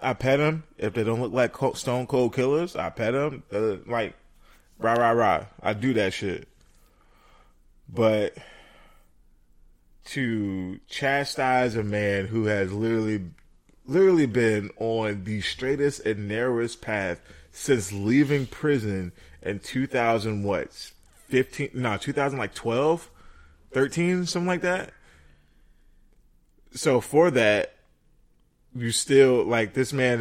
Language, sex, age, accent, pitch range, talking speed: English, male, 20-39, American, 100-135 Hz, 125 wpm